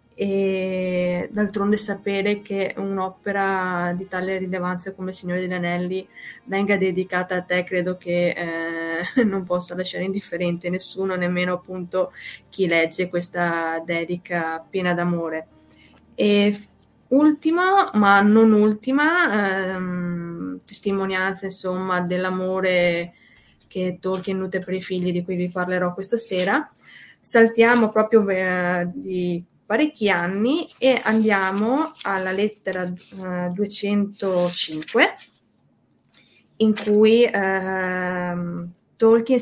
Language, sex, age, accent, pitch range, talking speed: Italian, female, 20-39, native, 180-205 Hz, 100 wpm